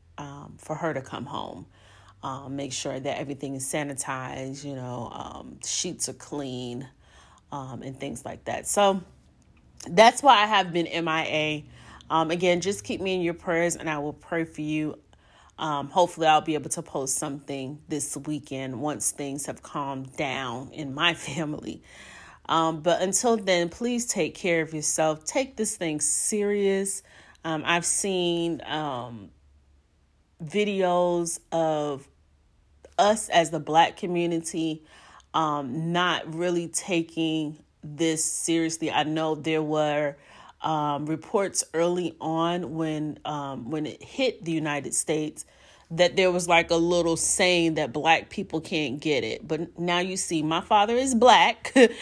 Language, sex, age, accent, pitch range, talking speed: English, female, 30-49, American, 145-175 Hz, 150 wpm